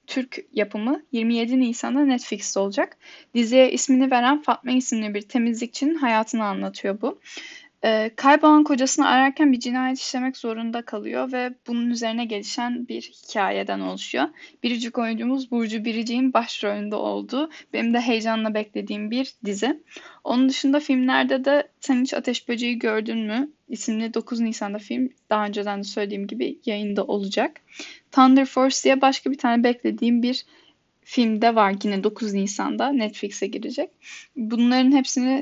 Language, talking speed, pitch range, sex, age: Turkish, 135 wpm, 220-275 Hz, female, 10-29